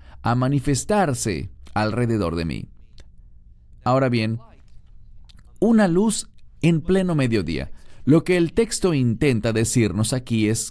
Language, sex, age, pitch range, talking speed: English, male, 40-59, 100-145 Hz, 110 wpm